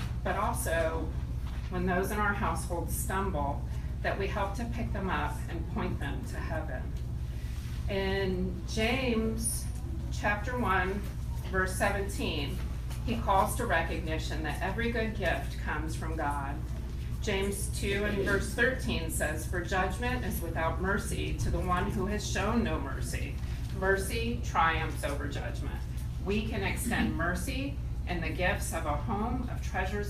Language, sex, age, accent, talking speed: English, female, 40-59, American, 145 wpm